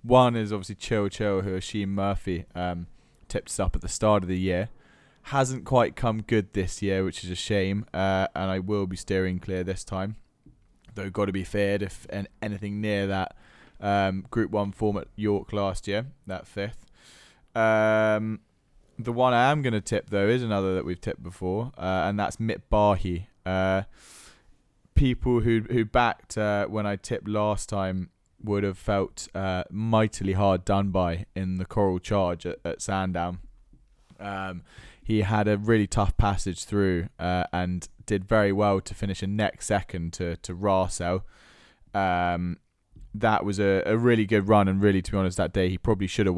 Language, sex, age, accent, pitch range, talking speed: English, male, 20-39, British, 95-105 Hz, 185 wpm